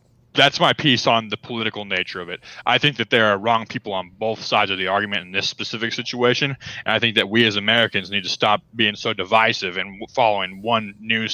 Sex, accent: male, American